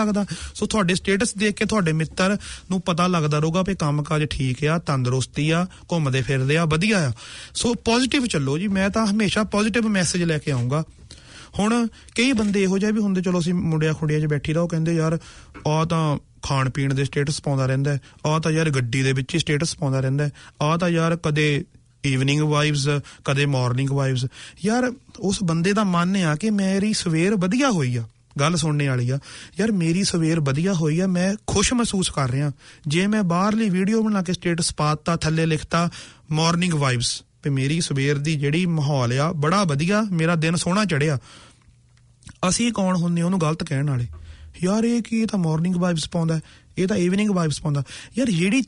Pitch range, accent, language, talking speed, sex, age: 145-195 Hz, Indian, English, 125 wpm, male, 30-49